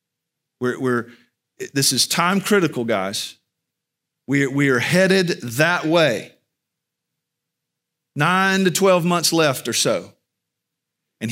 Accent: American